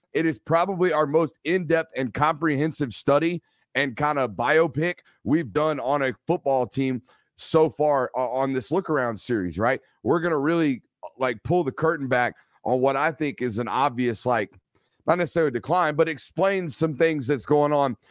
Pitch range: 125-150 Hz